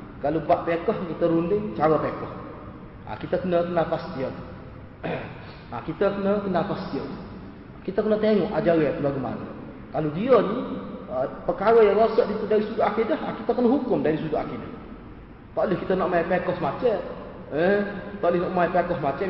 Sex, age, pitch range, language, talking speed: male, 30-49, 165-215 Hz, Malay, 155 wpm